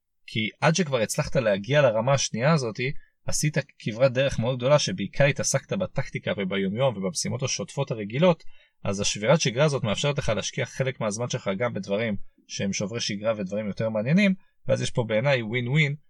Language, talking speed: Hebrew, 165 wpm